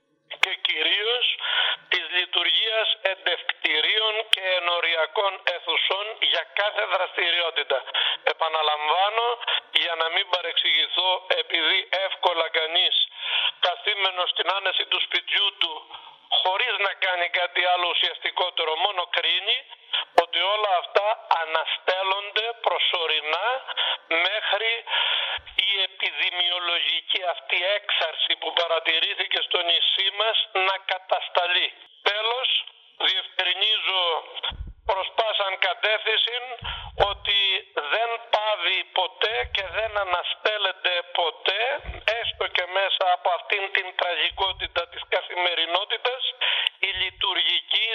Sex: male